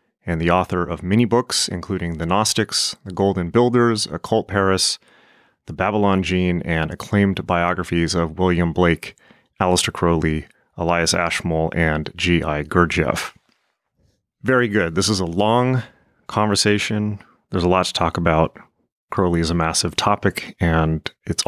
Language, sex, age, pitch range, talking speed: English, male, 30-49, 85-110 Hz, 140 wpm